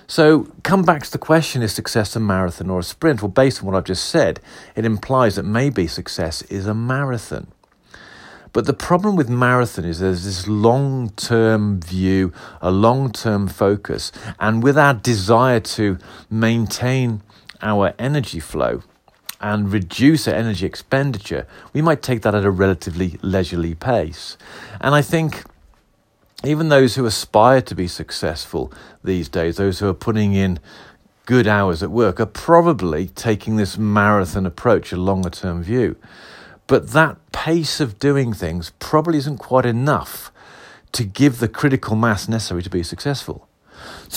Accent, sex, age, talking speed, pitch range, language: British, male, 40-59, 155 wpm, 95-135 Hz, English